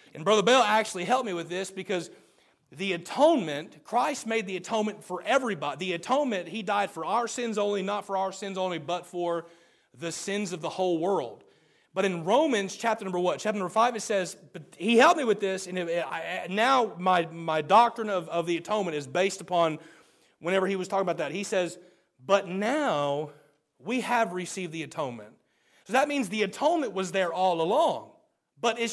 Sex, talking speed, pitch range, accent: male, 195 wpm, 170-220 Hz, American